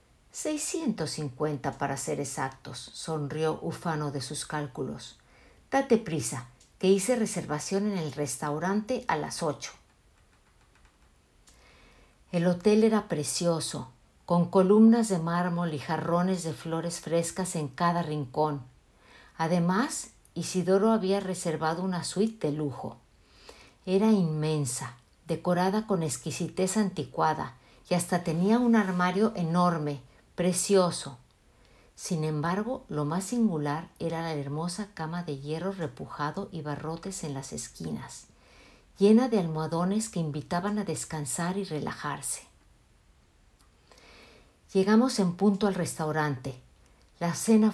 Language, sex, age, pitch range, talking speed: Spanish, female, 50-69, 150-195 Hz, 115 wpm